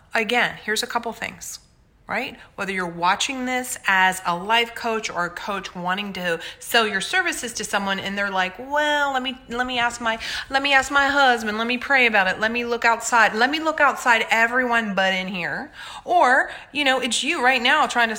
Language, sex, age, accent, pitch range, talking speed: English, female, 30-49, American, 200-270 Hz, 215 wpm